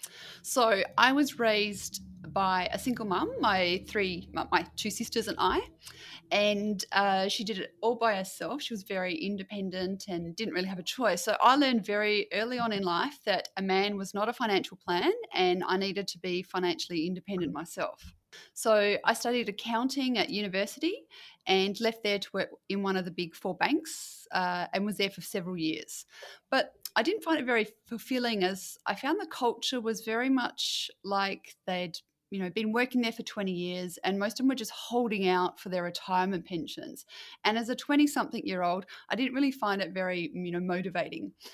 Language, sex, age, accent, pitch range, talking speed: English, female, 30-49, Australian, 185-245 Hz, 195 wpm